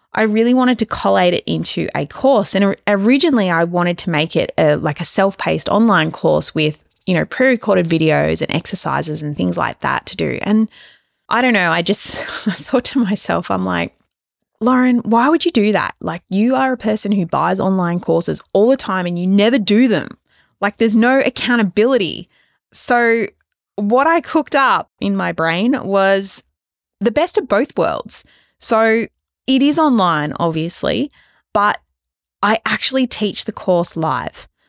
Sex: female